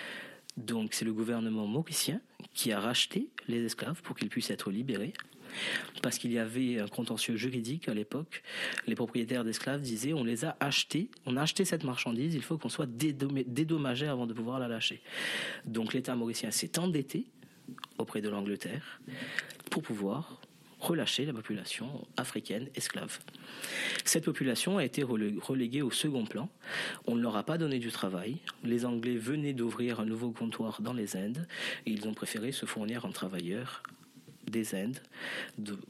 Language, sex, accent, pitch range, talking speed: French, male, French, 110-135 Hz, 165 wpm